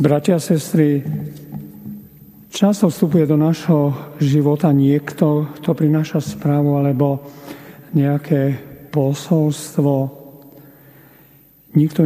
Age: 50-69